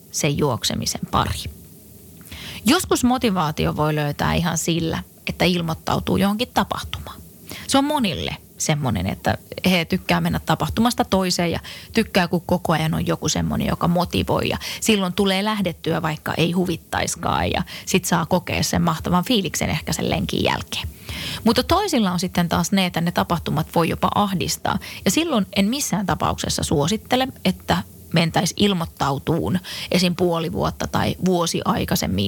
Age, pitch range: 20-39, 160-205 Hz